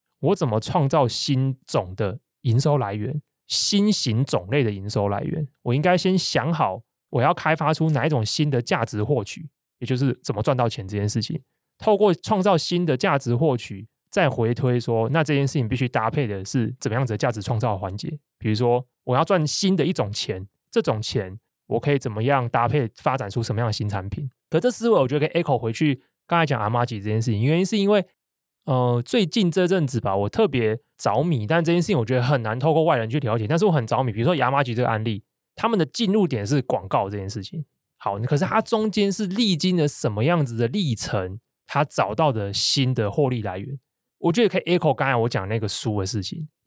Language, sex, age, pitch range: Chinese, male, 20-39, 115-160 Hz